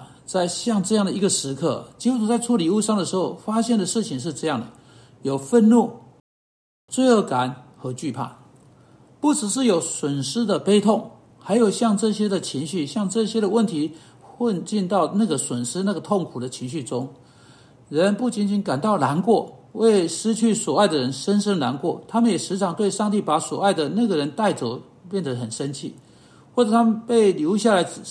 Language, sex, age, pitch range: Chinese, male, 50-69, 155-220 Hz